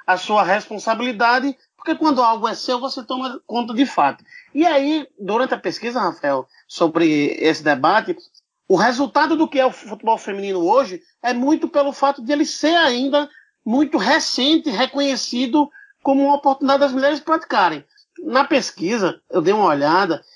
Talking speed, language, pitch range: 160 wpm, Portuguese, 220-300 Hz